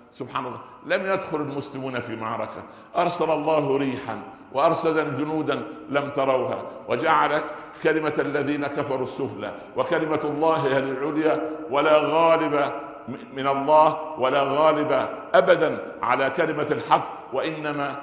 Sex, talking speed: male, 115 wpm